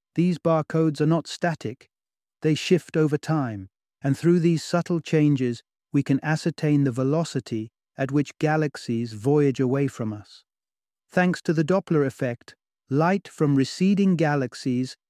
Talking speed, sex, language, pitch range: 140 wpm, male, English, 130-160 Hz